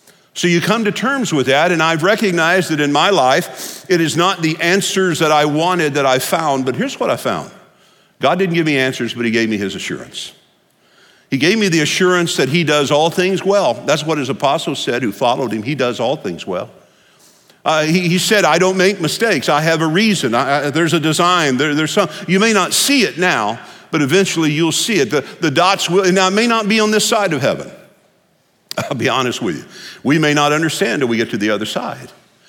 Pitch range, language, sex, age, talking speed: 150-190 Hz, English, male, 50-69, 235 wpm